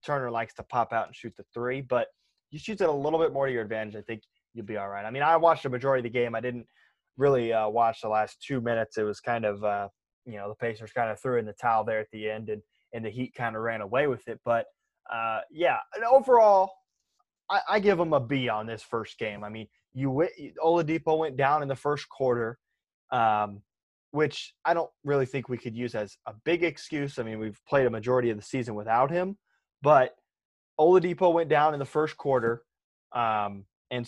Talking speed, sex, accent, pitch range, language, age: 235 wpm, male, American, 110-140 Hz, English, 20-39